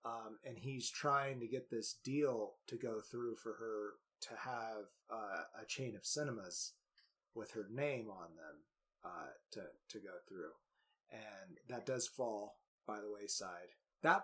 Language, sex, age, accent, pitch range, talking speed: English, male, 30-49, American, 110-140 Hz, 160 wpm